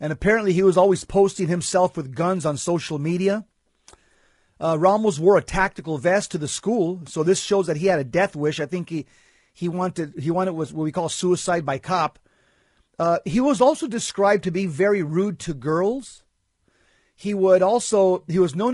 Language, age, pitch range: English, 40-59, 160-195 Hz